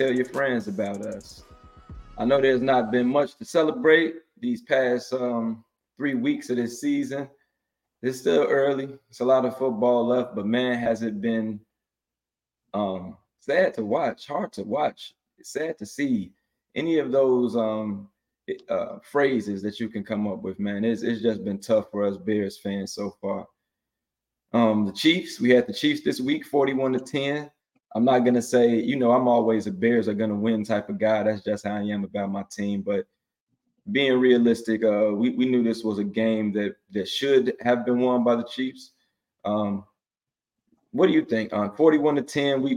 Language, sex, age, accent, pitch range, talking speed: English, male, 20-39, American, 110-130 Hz, 190 wpm